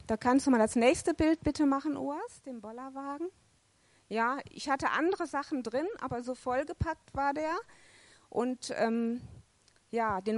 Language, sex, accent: German, female, German